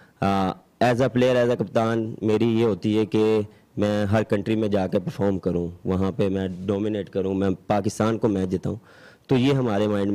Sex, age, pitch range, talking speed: male, 20-39, 95-105 Hz, 195 wpm